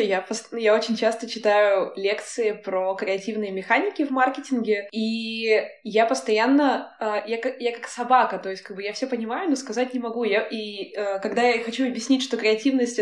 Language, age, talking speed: Russian, 20-39, 150 wpm